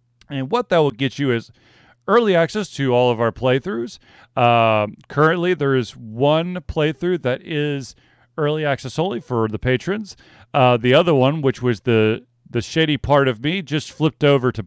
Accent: American